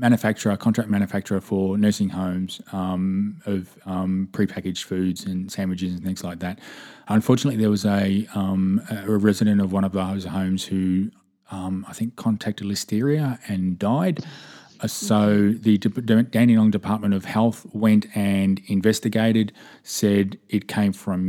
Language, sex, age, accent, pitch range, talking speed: English, male, 20-39, Australian, 95-105 Hz, 140 wpm